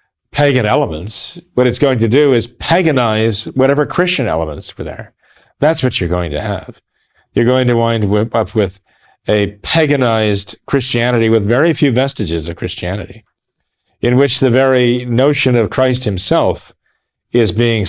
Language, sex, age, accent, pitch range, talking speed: English, male, 40-59, American, 105-130 Hz, 155 wpm